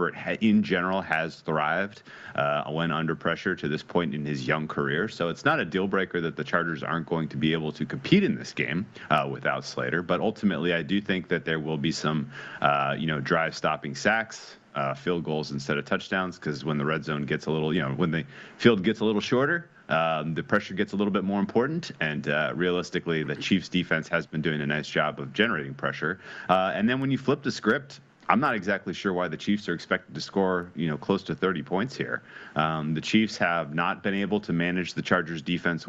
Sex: male